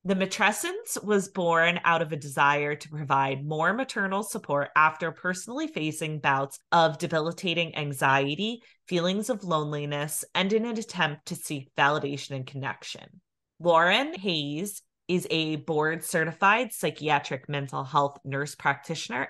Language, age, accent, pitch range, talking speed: English, 30-49, American, 150-200 Hz, 130 wpm